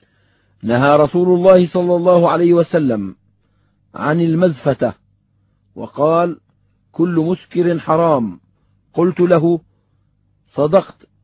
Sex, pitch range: male, 125-175 Hz